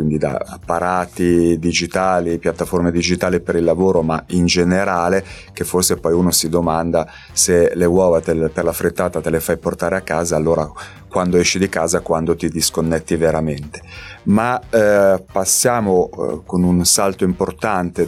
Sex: male